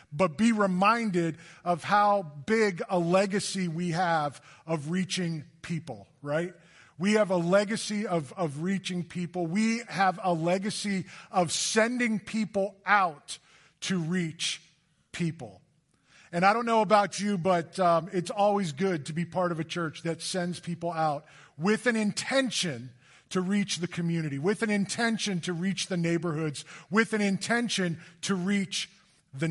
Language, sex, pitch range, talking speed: English, male, 165-200 Hz, 150 wpm